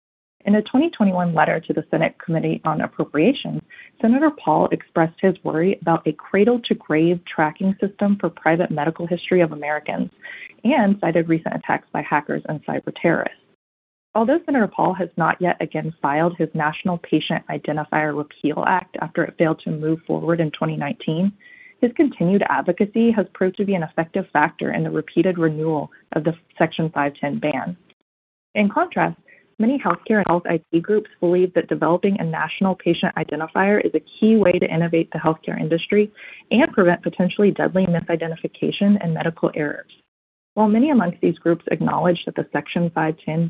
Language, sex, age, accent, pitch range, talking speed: English, female, 20-39, American, 160-205 Hz, 165 wpm